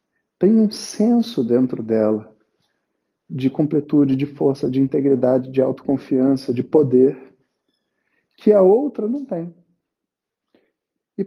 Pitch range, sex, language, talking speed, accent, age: 140-195 Hz, male, Portuguese, 110 wpm, Brazilian, 40-59